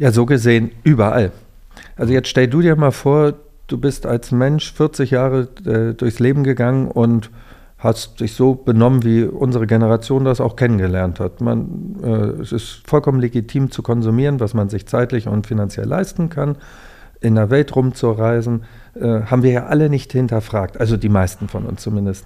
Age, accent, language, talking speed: 50-69, German, German, 175 wpm